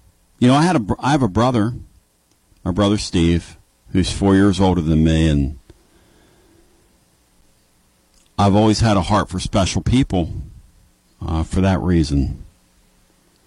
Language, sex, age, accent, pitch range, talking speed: English, male, 50-69, American, 80-100 Hz, 135 wpm